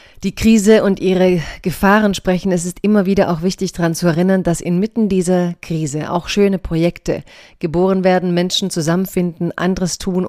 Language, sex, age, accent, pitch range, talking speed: German, female, 30-49, German, 170-190 Hz, 165 wpm